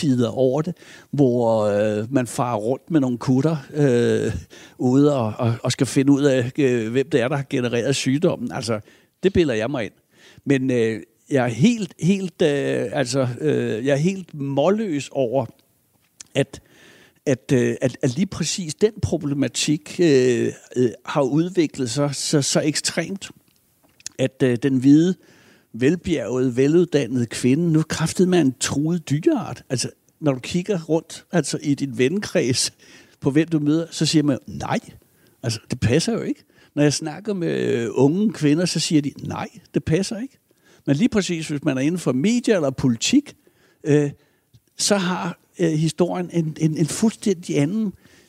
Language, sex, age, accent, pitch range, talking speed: Danish, male, 60-79, native, 130-170 Hz, 160 wpm